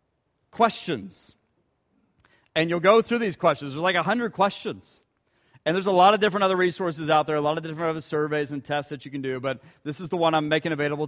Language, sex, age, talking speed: English, male, 40-59, 225 wpm